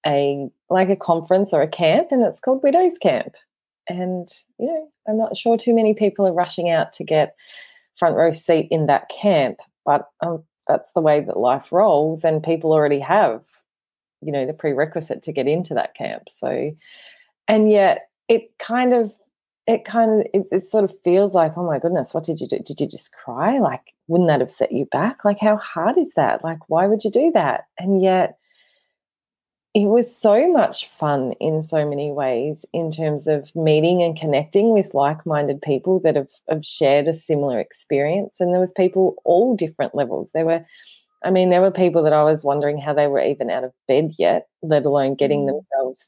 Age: 30-49